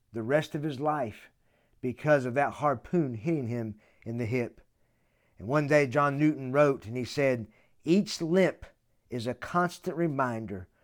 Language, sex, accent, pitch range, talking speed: English, male, American, 115-160 Hz, 160 wpm